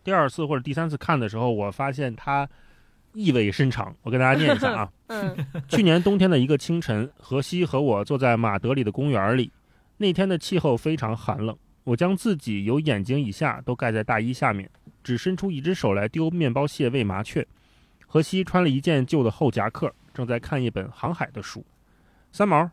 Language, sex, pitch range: Chinese, male, 115-160 Hz